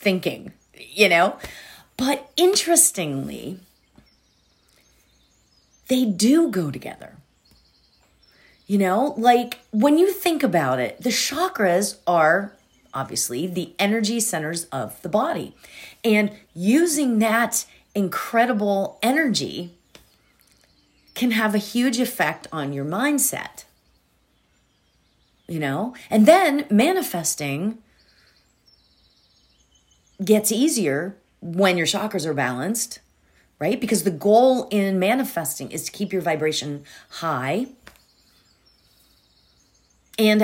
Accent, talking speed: American, 95 wpm